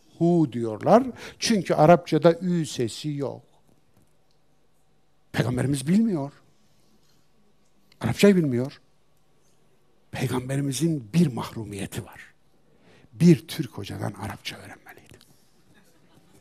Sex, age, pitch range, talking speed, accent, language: male, 60-79, 125-175 Hz, 75 wpm, native, Turkish